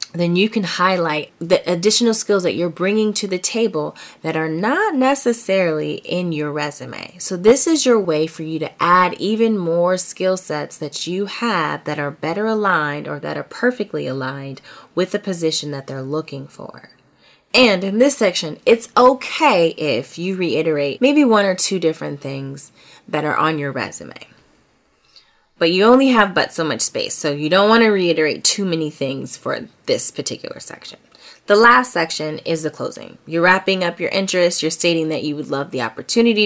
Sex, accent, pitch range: female, American, 155-210 Hz